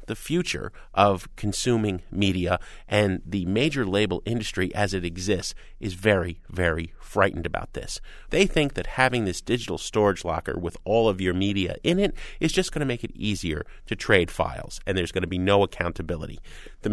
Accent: American